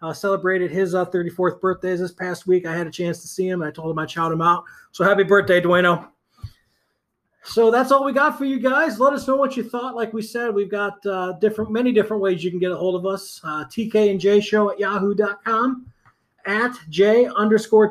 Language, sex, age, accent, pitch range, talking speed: English, male, 30-49, American, 180-225 Hz, 230 wpm